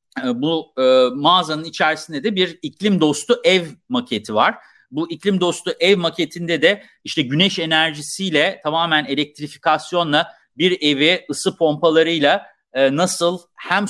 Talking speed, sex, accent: 125 wpm, male, native